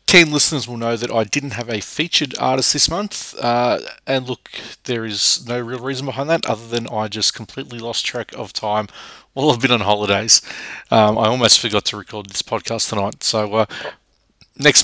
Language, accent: English, Australian